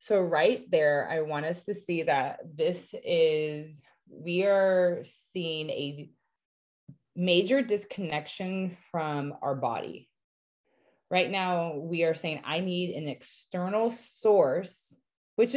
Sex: female